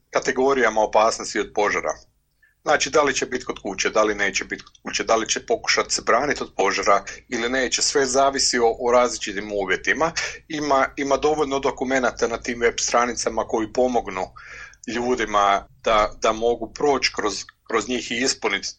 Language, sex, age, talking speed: Croatian, male, 40-59, 170 wpm